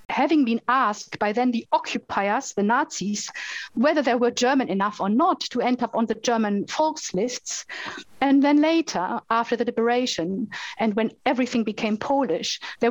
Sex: female